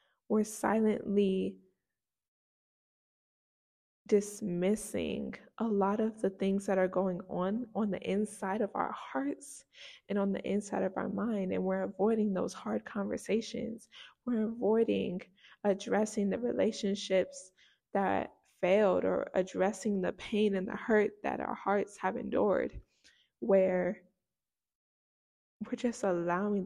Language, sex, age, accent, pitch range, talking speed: English, female, 20-39, American, 190-225 Hz, 120 wpm